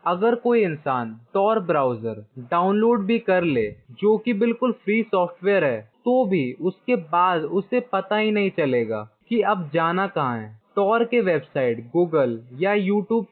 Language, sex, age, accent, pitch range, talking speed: Hindi, male, 20-39, native, 155-220 Hz, 160 wpm